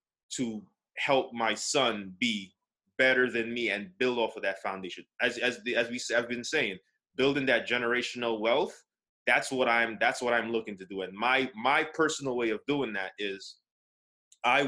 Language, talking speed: English, 185 wpm